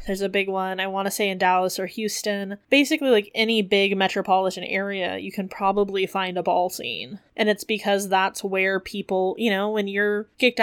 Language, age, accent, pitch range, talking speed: English, 20-39, American, 185-210 Hz, 205 wpm